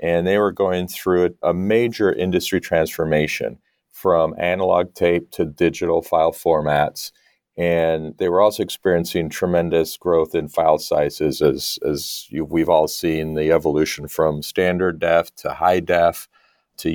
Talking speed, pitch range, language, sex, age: 140 wpm, 80-90 Hz, English, male, 40-59